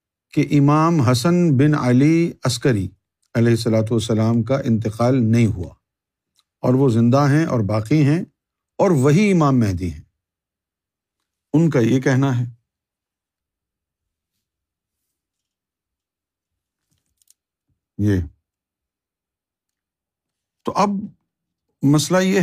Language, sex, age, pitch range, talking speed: Urdu, male, 50-69, 105-145 Hz, 95 wpm